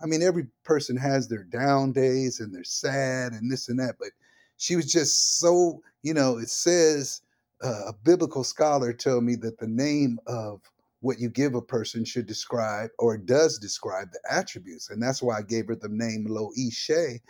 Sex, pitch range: male, 115-145 Hz